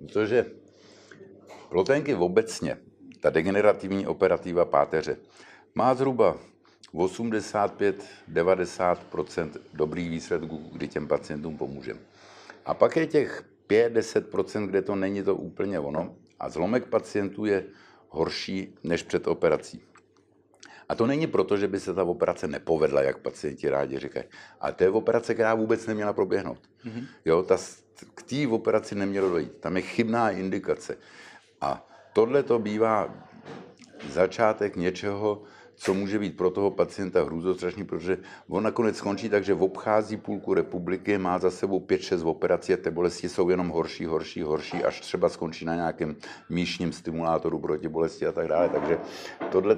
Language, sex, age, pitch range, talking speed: Czech, male, 50-69, 90-115 Hz, 145 wpm